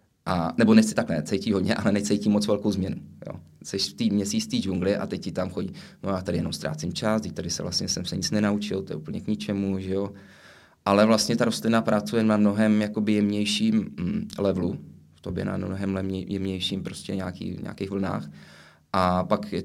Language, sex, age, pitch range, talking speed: Czech, male, 20-39, 95-105 Hz, 195 wpm